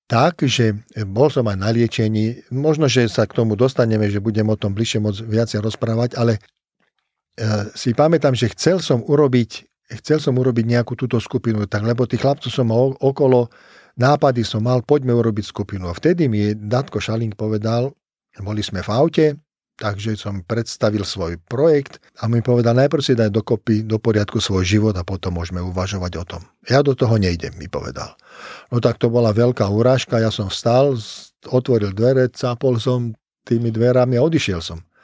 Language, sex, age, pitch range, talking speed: Slovak, male, 50-69, 110-130 Hz, 175 wpm